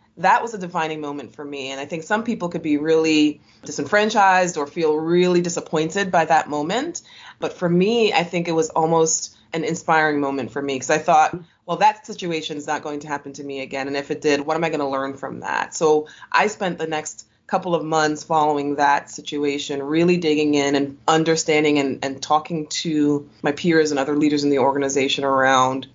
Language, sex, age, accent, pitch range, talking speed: English, female, 20-39, American, 145-170 Hz, 210 wpm